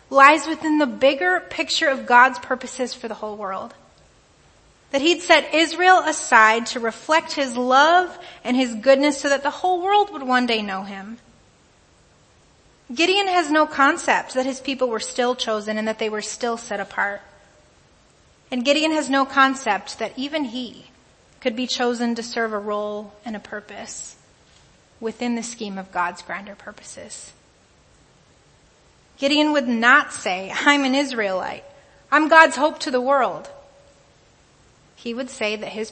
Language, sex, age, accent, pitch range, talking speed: English, female, 30-49, American, 220-290 Hz, 155 wpm